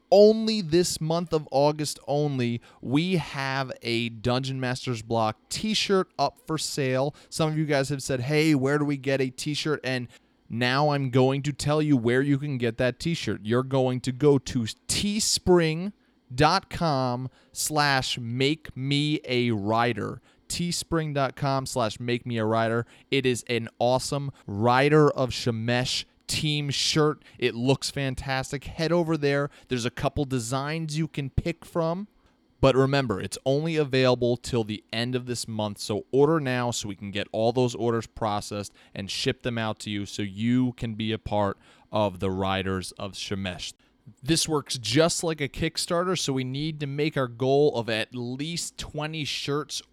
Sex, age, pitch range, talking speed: male, 30-49, 120-150 Hz, 165 wpm